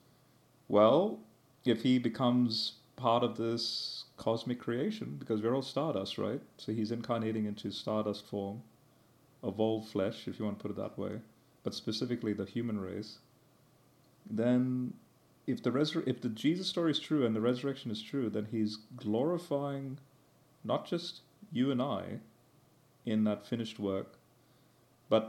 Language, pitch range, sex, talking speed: English, 105-125 Hz, male, 150 wpm